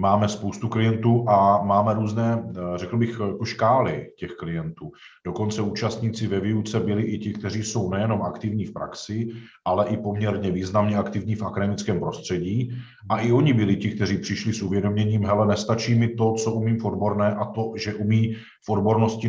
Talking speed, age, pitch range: 165 wpm, 50-69, 105-125 Hz